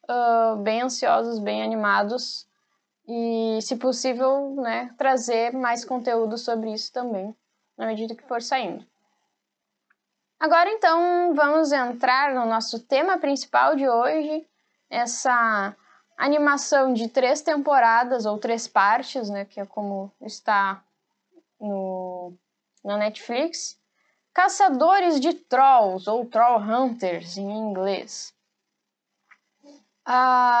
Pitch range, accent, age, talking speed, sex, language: 220-280 Hz, Brazilian, 10-29, 105 wpm, female, Portuguese